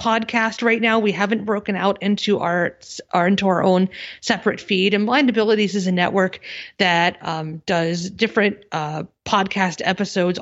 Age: 30-49